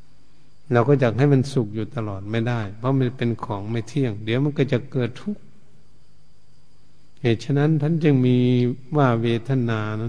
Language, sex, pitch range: Thai, male, 115-140 Hz